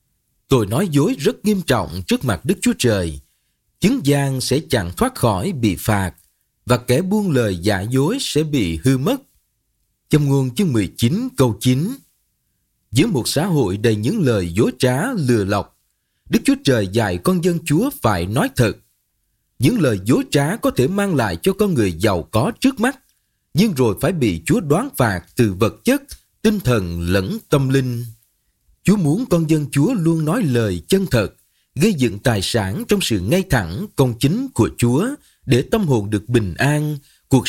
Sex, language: male, Vietnamese